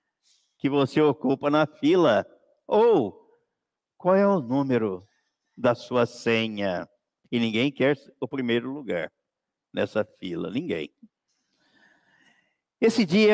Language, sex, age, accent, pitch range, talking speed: Portuguese, male, 50-69, Brazilian, 115-190 Hz, 110 wpm